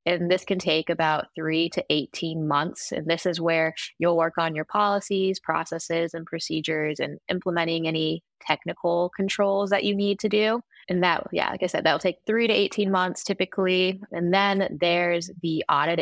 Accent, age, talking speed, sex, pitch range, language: American, 20-39, 185 wpm, female, 160-185 Hz, English